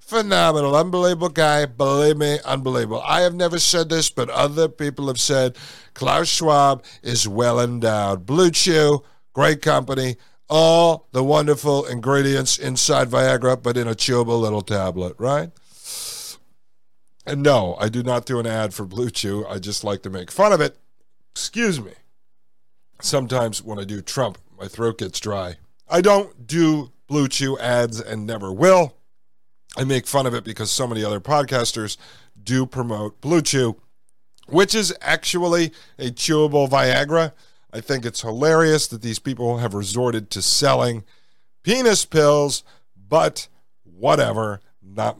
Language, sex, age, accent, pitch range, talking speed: English, male, 50-69, American, 105-150 Hz, 150 wpm